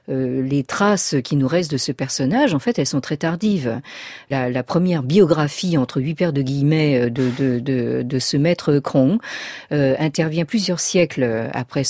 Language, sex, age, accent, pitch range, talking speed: French, female, 40-59, French, 130-175 Hz, 180 wpm